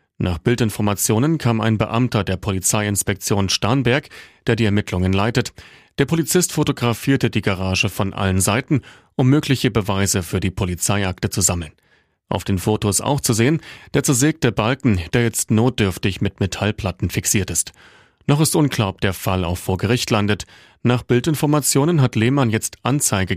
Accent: German